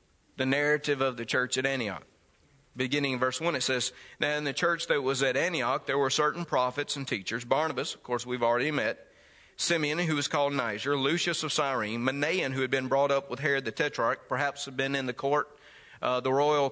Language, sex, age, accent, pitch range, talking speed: English, male, 40-59, American, 130-155 Hz, 215 wpm